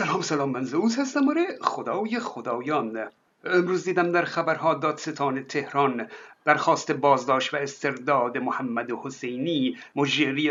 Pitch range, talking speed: 140-185 Hz, 130 wpm